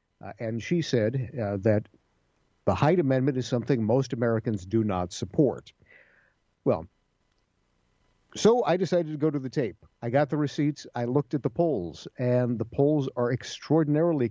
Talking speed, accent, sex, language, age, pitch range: 165 wpm, American, male, English, 50-69, 105-130 Hz